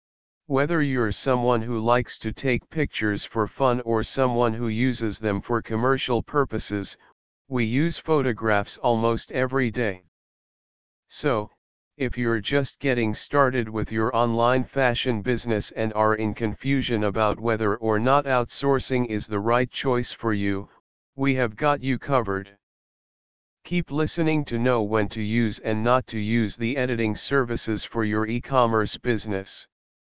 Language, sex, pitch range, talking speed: English, male, 110-130 Hz, 145 wpm